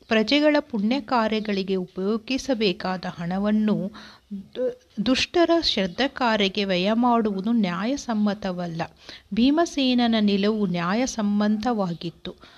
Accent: native